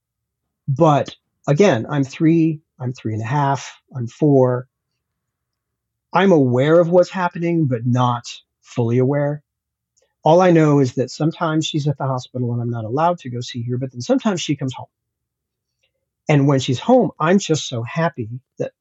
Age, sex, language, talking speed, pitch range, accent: 40-59, male, English, 170 wpm, 130-170 Hz, American